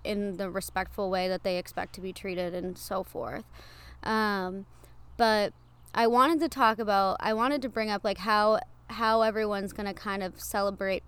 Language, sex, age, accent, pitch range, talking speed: English, female, 20-39, American, 200-225 Hz, 185 wpm